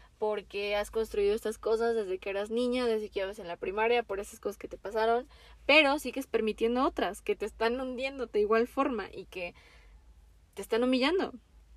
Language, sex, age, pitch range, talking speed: Spanish, female, 20-39, 195-230 Hz, 190 wpm